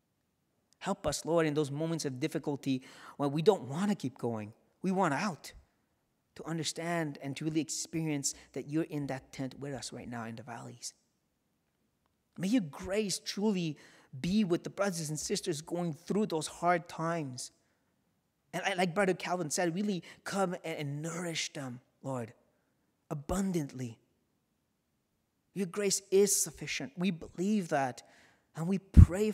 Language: English